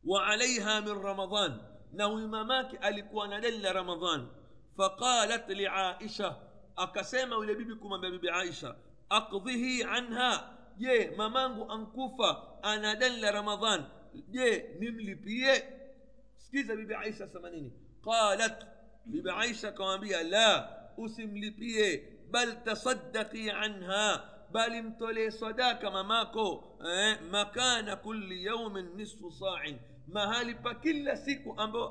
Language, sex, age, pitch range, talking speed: Swahili, male, 50-69, 195-230 Hz, 90 wpm